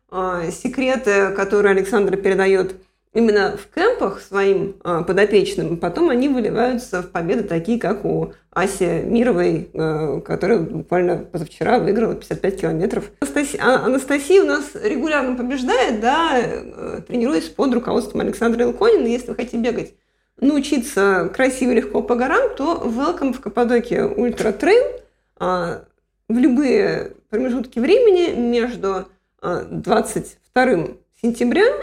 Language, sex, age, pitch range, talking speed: Russian, female, 20-39, 200-310 Hz, 110 wpm